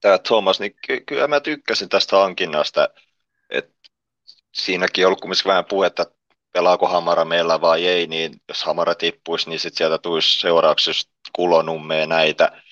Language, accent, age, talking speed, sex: Finnish, native, 30-49, 150 wpm, male